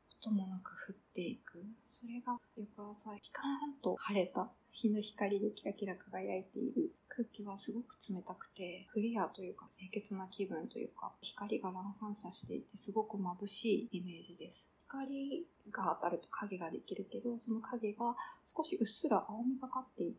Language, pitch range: Japanese, 190-235 Hz